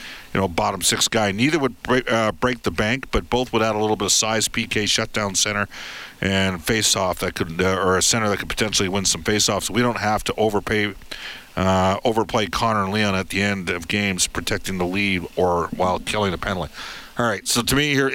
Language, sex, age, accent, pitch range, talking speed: English, male, 50-69, American, 95-115 Hz, 220 wpm